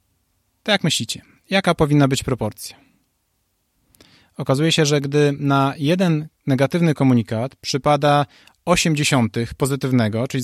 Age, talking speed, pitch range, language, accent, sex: 30-49, 110 wpm, 125-160 Hz, Polish, native, male